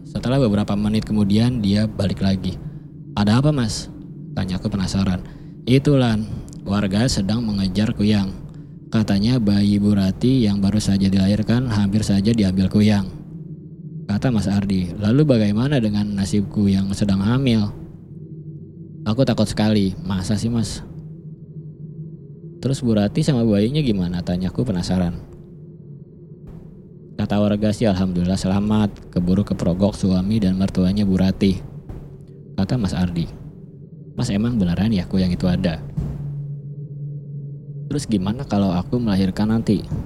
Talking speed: 125 wpm